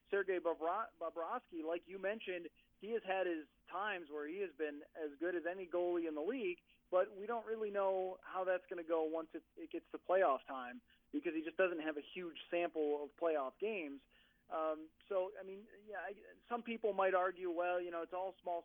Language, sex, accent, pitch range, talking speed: English, male, American, 160-200 Hz, 210 wpm